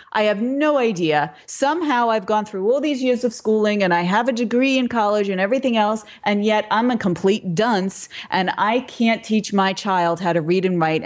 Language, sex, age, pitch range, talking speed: English, female, 30-49, 185-245 Hz, 215 wpm